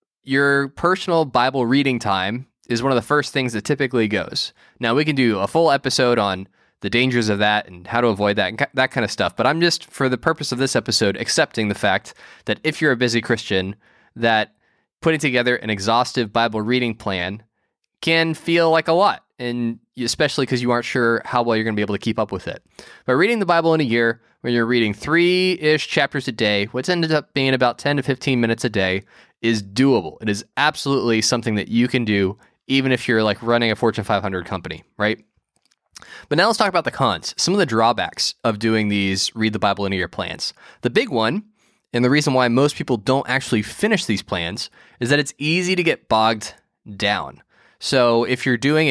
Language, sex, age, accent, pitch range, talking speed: English, male, 20-39, American, 110-140 Hz, 215 wpm